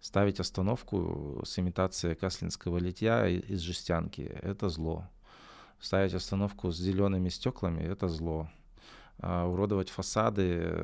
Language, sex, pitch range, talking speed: Russian, male, 85-95 Hz, 105 wpm